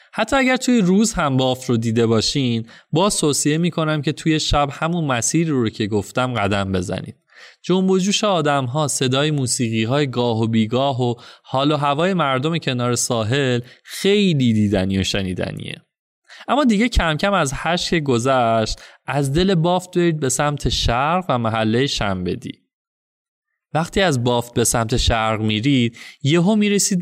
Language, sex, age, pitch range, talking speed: Persian, male, 20-39, 120-170 Hz, 155 wpm